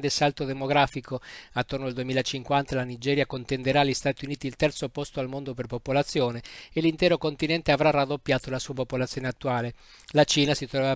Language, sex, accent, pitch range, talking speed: Italian, male, native, 130-150 Hz, 170 wpm